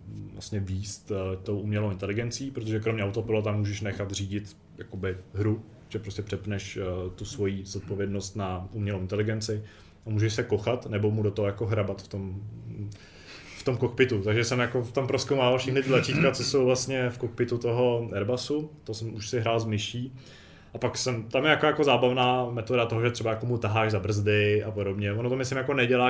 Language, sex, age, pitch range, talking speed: Czech, male, 20-39, 100-115 Hz, 200 wpm